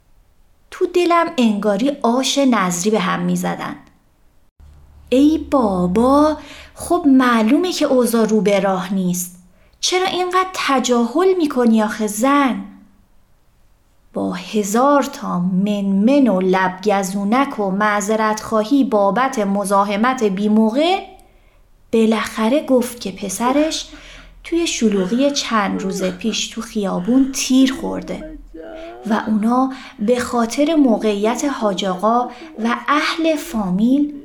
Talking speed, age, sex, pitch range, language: 100 wpm, 30-49, female, 200-290 Hz, Persian